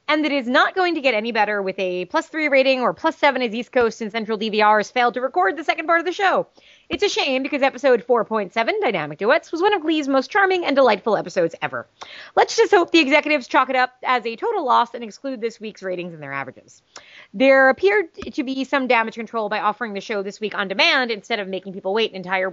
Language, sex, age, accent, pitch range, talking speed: English, female, 30-49, American, 195-295 Hz, 250 wpm